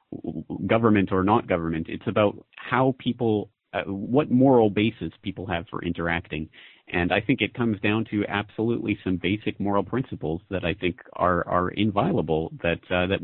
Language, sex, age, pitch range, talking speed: English, male, 40-59, 90-110 Hz, 170 wpm